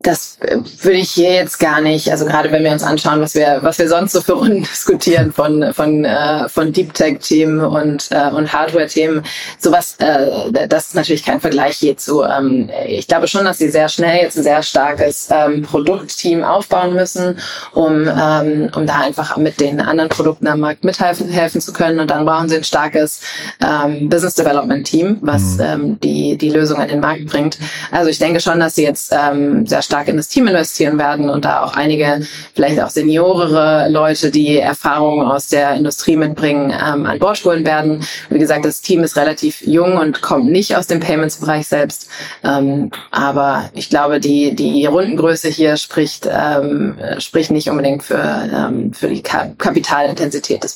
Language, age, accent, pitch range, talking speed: German, 20-39, German, 145-165 Hz, 180 wpm